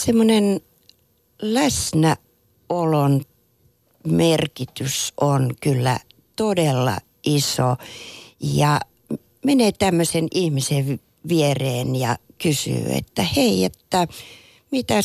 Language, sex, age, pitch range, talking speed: Finnish, female, 60-79, 130-170 Hz, 70 wpm